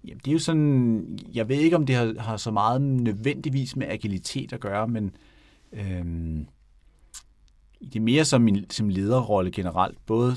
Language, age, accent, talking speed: Danish, 30-49, native, 175 wpm